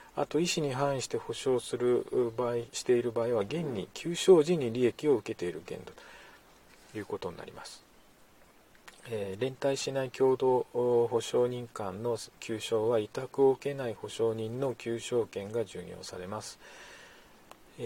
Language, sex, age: Japanese, male, 40-59